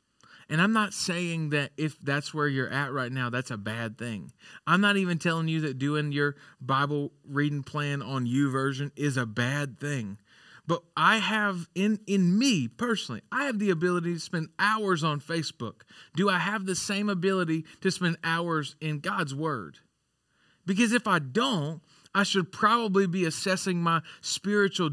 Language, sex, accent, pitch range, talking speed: English, male, American, 150-200 Hz, 175 wpm